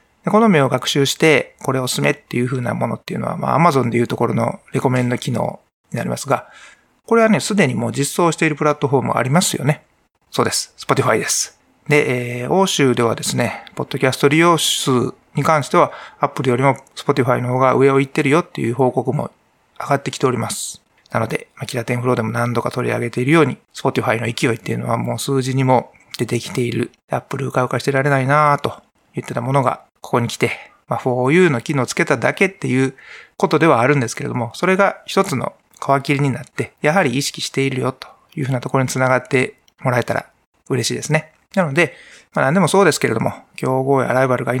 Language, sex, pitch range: Japanese, male, 125-155 Hz